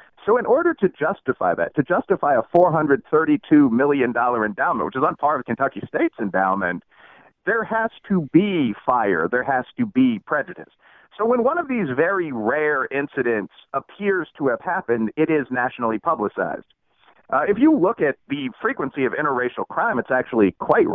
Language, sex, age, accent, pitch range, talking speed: English, male, 40-59, American, 115-190 Hz, 170 wpm